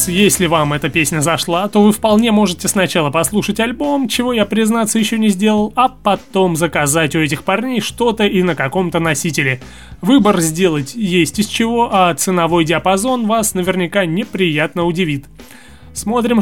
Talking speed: 155 wpm